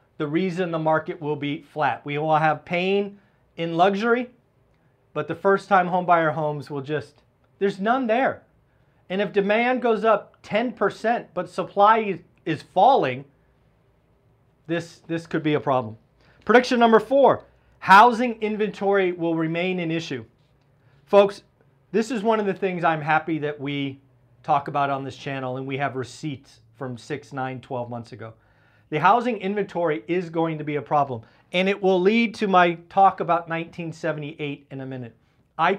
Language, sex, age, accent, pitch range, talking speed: English, male, 40-59, American, 140-190 Hz, 165 wpm